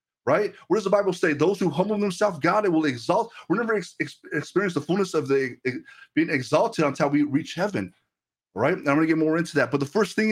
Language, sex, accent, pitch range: English, male, American, 130-175 Hz